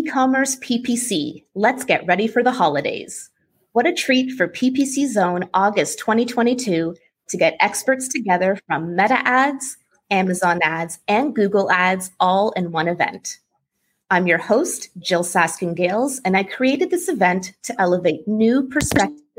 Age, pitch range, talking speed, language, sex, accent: 30-49, 180-245 Hz, 140 wpm, English, female, American